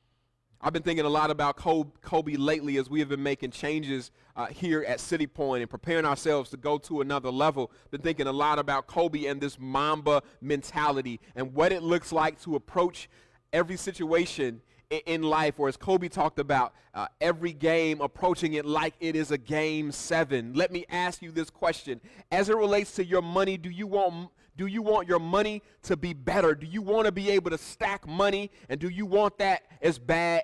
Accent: American